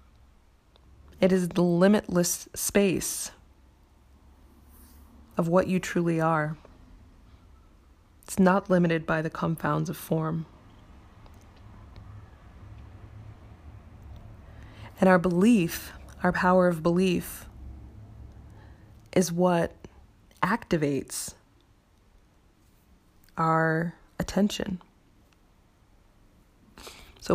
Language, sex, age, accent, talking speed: English, female, 20-39, American, 70 wpm